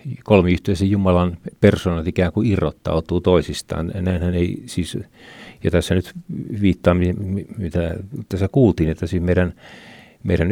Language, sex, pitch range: Finnish, male, 90-115 Hz